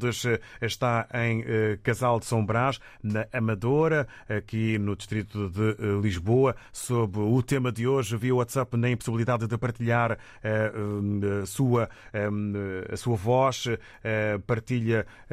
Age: 30-49